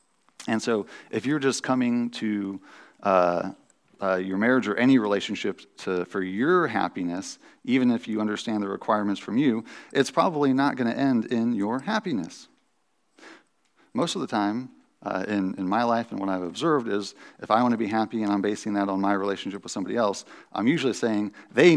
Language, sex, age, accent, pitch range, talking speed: English, male, 40-59, American, 95-120 Hz, 185 wpm